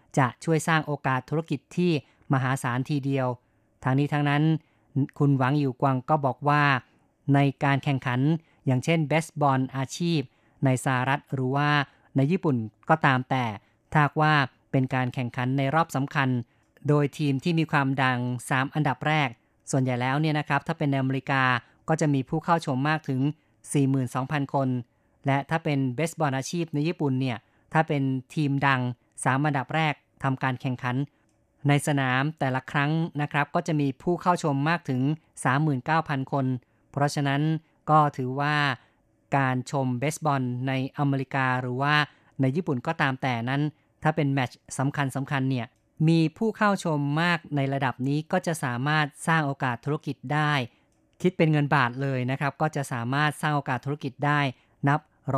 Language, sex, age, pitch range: Thai, female, 20-39, 130-150 Hz